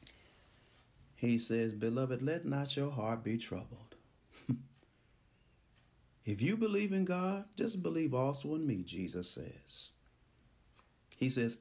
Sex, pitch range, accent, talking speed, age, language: male, 120-170 Hz, American, 120 wpm, 40-59, English